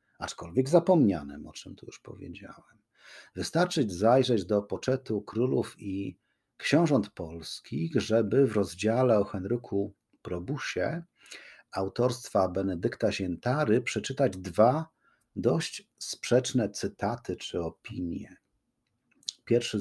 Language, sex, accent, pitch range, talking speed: Polish, male, native, 95-120 Hz, 95 wpm